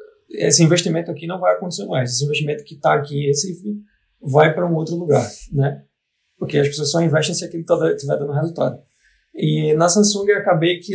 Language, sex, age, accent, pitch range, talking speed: Portuguese, male, 20-39, Brazilian, 135-165 Hz, 190 wpm